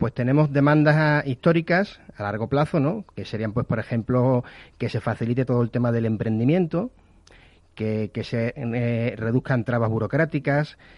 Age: 30-49